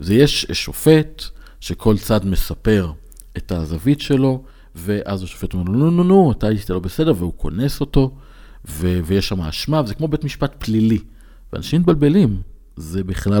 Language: Hebrew